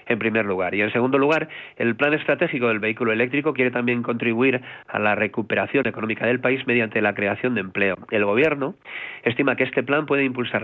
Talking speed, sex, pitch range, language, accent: 200 wpm, male, 110-135 Hz, Spanish, Spanish